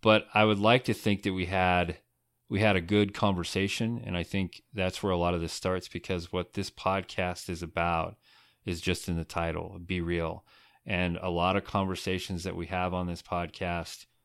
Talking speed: 200 wpm